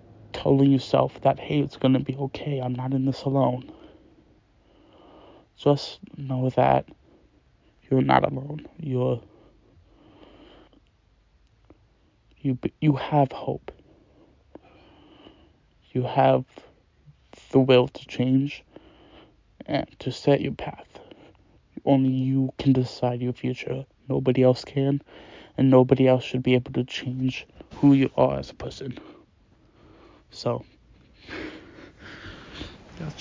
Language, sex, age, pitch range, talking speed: English, male, 20-39, 120-135 Hz, 105 wpm